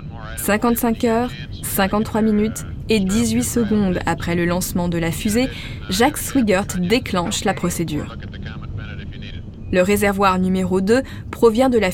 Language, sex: French, female